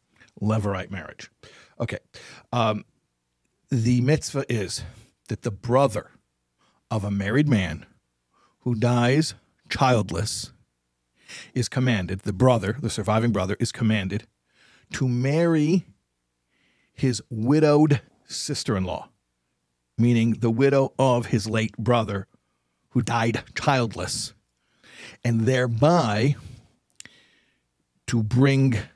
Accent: American